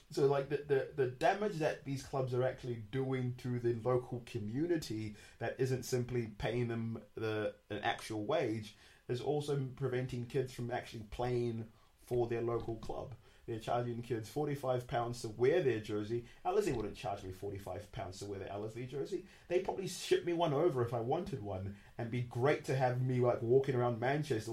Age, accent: 30-49, British